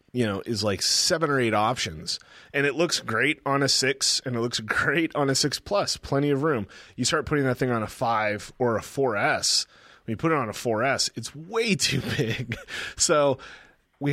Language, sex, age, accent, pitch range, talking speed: English, male, 30-49, American, 115-145 Hz, 220 wpm